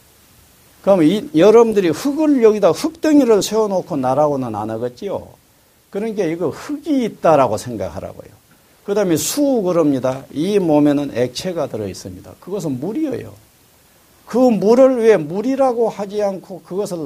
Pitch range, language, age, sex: 165-235 Hz, Korean, 50-69, male